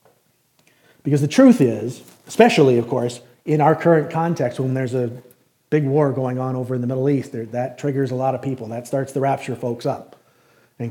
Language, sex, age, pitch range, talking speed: English, male, 40-59, 125-160 Hz, 205 wpm